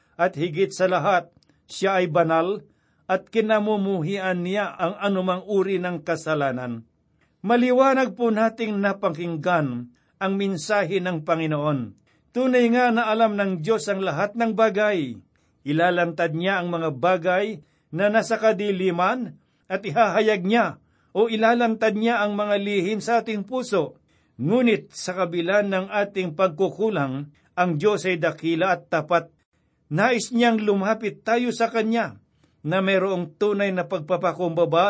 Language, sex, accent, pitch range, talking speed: Filipino, male, native, 175-215 Hz, 130 wpm